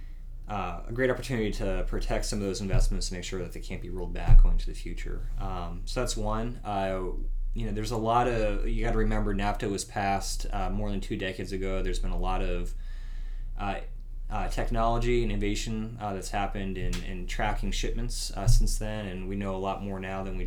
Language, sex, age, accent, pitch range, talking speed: English, male, 20-39, American, 95-115 Hz, 215 wpm